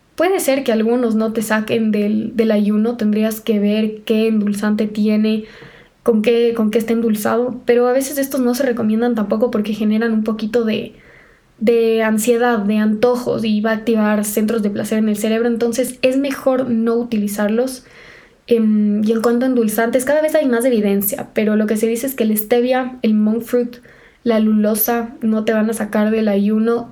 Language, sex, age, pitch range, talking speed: Spanish, female, 10-29, 215-235 Hz, 190 wpm